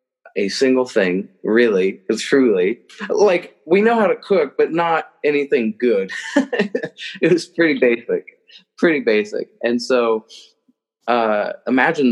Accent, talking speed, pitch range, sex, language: American, 125 wpm, 115-185 Hz, male, English